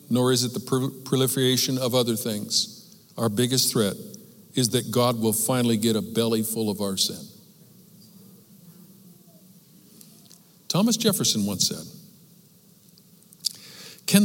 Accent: American